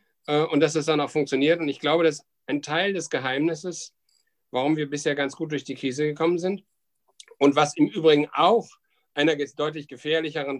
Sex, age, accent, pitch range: male, 60-79, German, 130-160 Hz